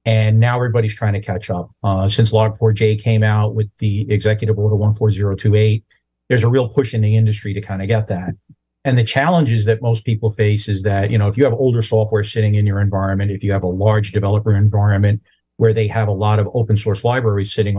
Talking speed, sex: 225 wpm, male